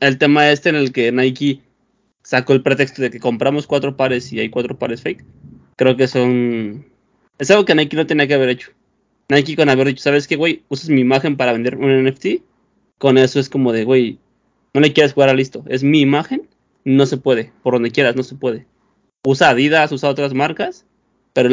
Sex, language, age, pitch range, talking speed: male, Spanish, 20-39, 125-145 Hz, 210 wpm